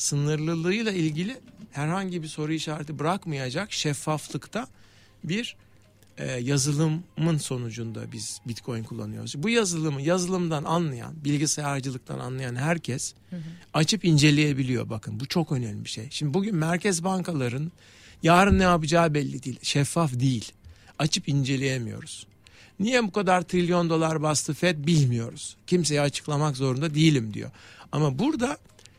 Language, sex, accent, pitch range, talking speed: Turkish, male, native, 130-180 Hz, 120 wpm